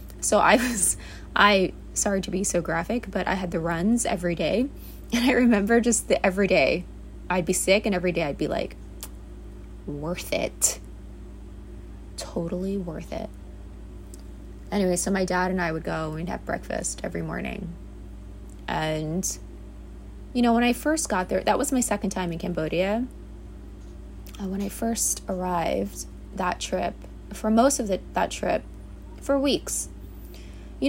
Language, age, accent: English, 20-39, American